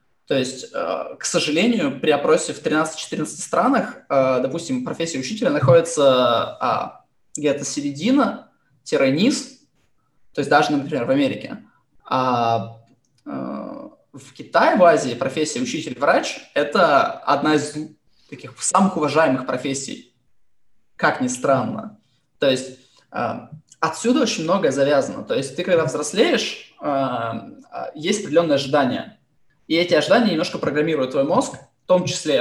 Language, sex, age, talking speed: Russian, male, 20-39, 115 wpm